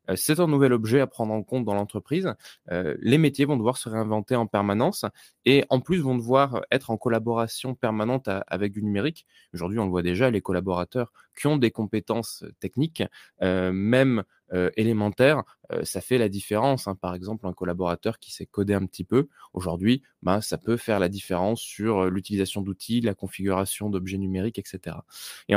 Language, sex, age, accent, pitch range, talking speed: French, male, 20-39, French, 100-120 Hz, 190 wpm